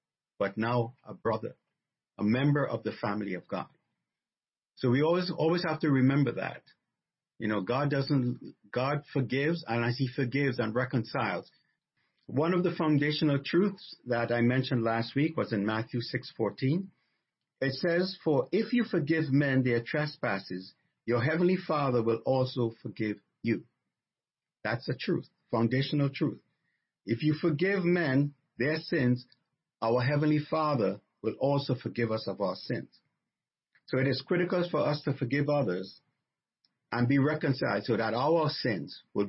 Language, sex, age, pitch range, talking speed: English, male, 50-69, 120-155 Hz, 150 wpm